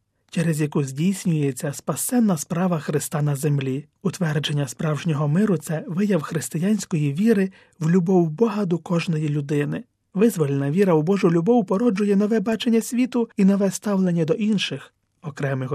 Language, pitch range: Ukrainian, 145-195 Hz